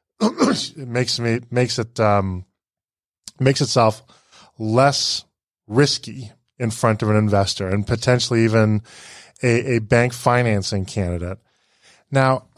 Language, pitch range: English, 105-130 Hz